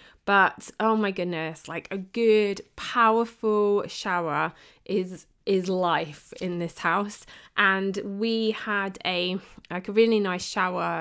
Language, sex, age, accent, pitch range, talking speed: English, female, 20-39, British, 175-215 Hz, 130 wpm